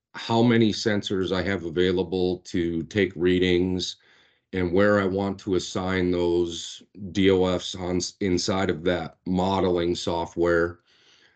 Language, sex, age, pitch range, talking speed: English, male, 40-59, 90-110 Hz, 120 wpm